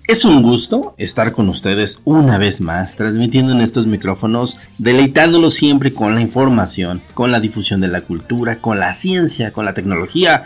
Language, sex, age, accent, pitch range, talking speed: Spanish, male, 40-59, Mexican, 105-145 Hz, 170 wpm